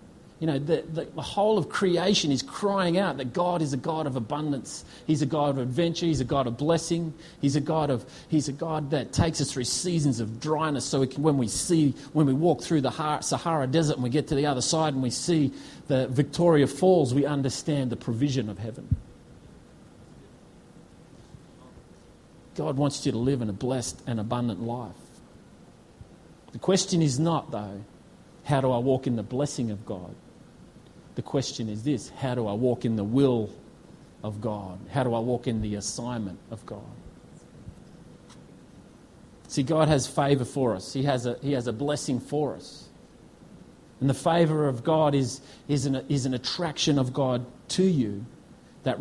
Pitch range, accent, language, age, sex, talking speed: 125-155 Hz, Australian, English, 40-59, male, 185 wpm